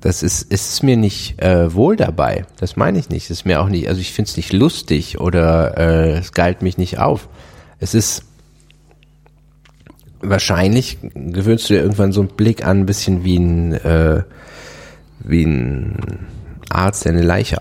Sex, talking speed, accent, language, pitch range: male, 175 wpm, German, German, 85-110 Hz